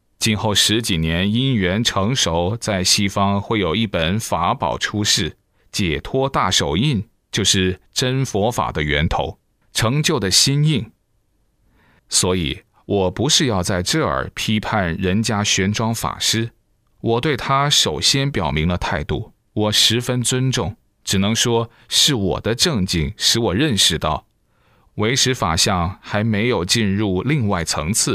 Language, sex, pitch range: Chinese, male, 95-120 Hz